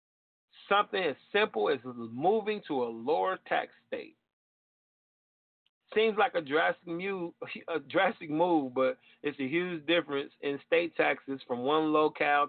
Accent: American